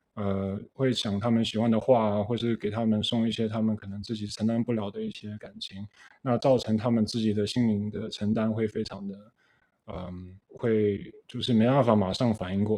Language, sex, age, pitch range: Chinese, male, 20-39, 105-125 Hz